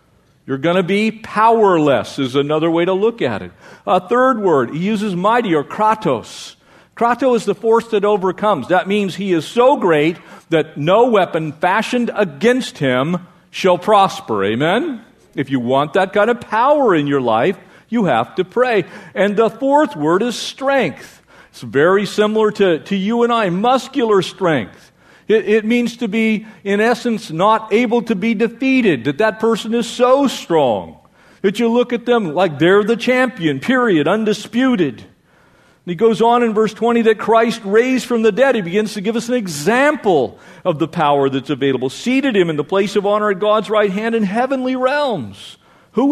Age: 50-69